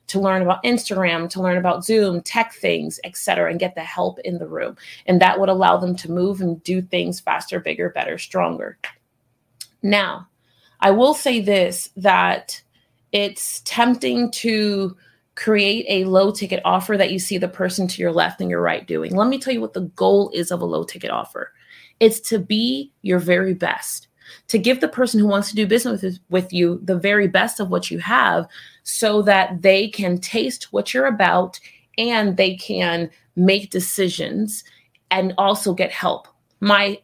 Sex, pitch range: female, 180-215 Hz